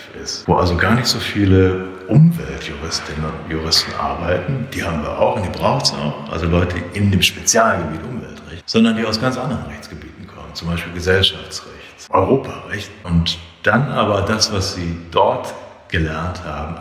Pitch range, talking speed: 85-100 Hz, 165 wpm